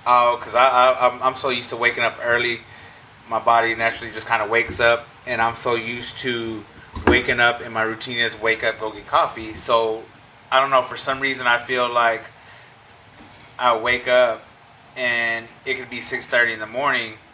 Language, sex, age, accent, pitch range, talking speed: English, male, 20-39, American, 110-125 Hz, 195 wpm